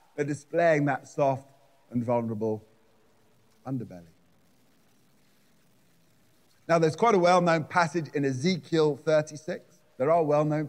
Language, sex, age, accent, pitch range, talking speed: English, male, 30-49, British, 140-205 Hz, 120 wpm